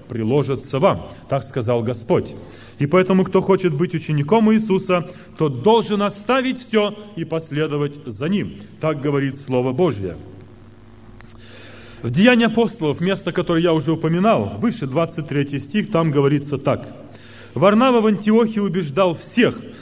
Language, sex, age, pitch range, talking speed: Russian, male, 30-49, 140-220 Hz, 130 wpm